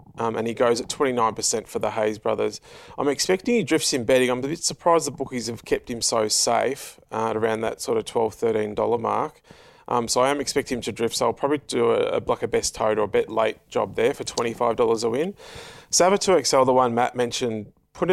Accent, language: Australian, English